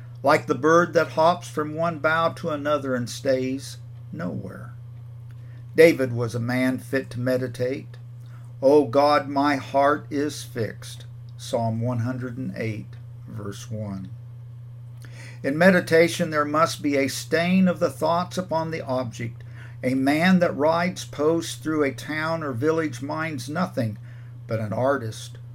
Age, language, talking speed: 50-69, English, 135 wpm